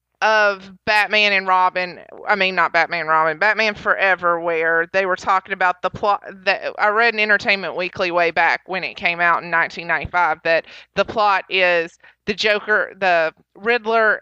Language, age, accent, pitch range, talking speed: English, 30-49, American, 185-235 Hz, 175 wpm